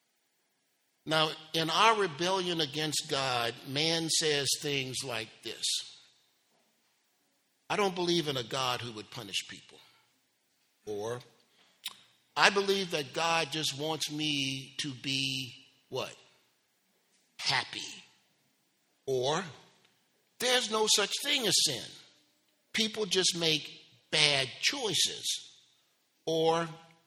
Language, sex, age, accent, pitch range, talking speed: English, male, 50-69, American, 125-160 Hz, 100 wpm